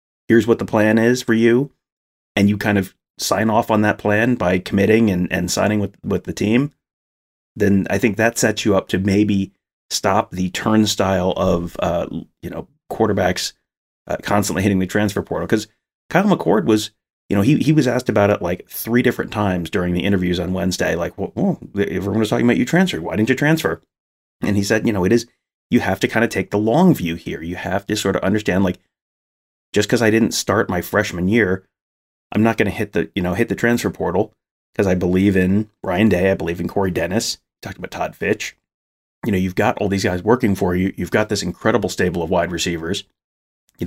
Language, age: English, 30-49